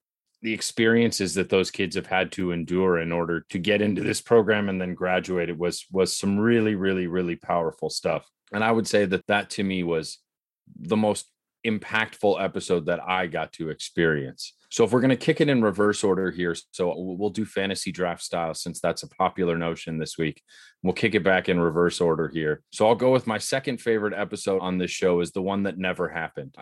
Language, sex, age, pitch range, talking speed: English, male, 30-49, 90-110 Hz, 215 wpm